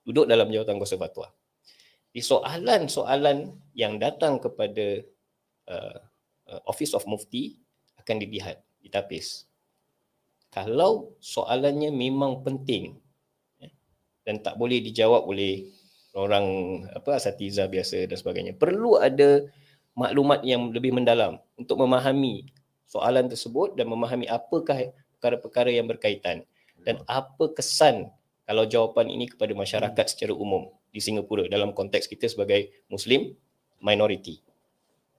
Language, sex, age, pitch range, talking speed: Malay, male, 20-39, 110-170 Hz, 110 wpm